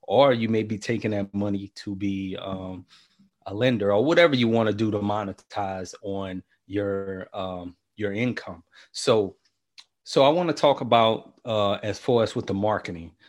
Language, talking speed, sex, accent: English, 175 wpm, male, American